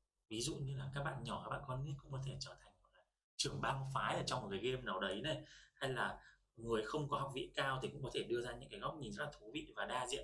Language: Vietnamese